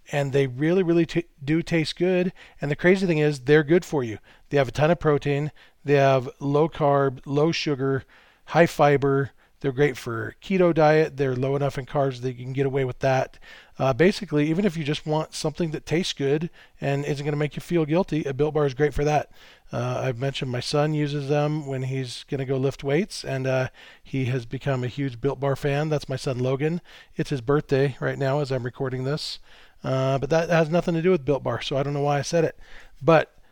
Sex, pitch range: male, 135-165 Hz